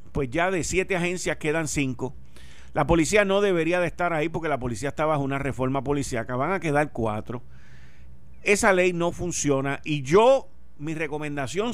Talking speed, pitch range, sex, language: 175 wpm, 110-175 Hz, male, Spanish